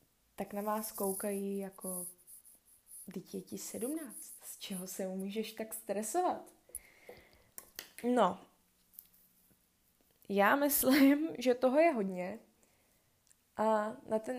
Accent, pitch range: native, 195-225 Hz